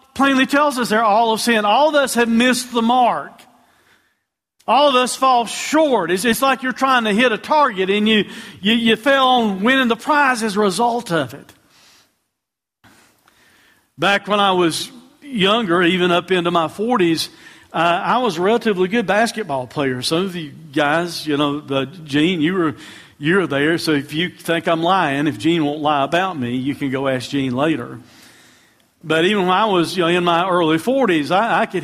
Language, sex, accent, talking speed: English, male, American, 200 wpm